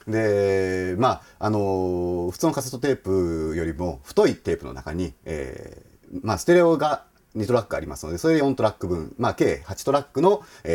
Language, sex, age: Japanese, male, 40-59